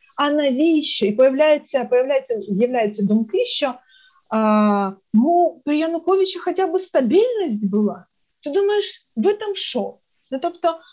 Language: Ukrainian